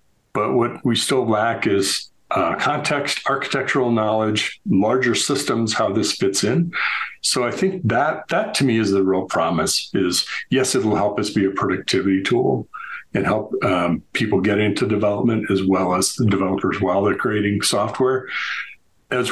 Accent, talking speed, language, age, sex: American, 170 wpm, English, 50-69, male